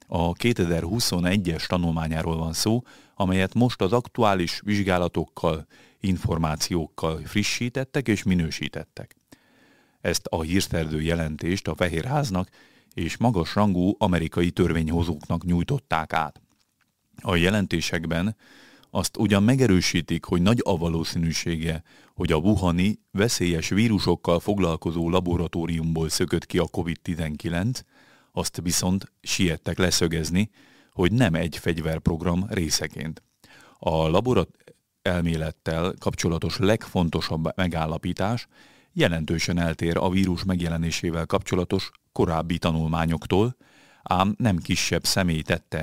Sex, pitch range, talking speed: male, 85-100 Hz, 100 wpm